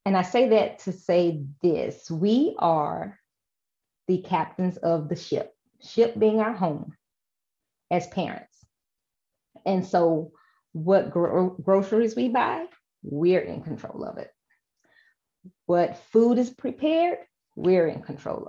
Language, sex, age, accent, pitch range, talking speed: English, female, 30-49, American, 175-220 Hz, 125 wpm